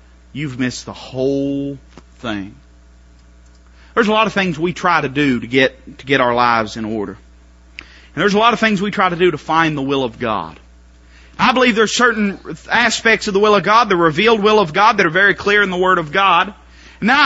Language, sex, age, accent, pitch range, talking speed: English, male, 30-49, American, 185-290 Hz, 220 wpm